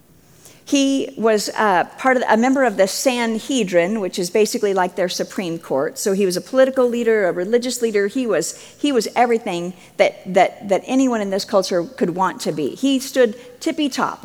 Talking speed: 175 wpm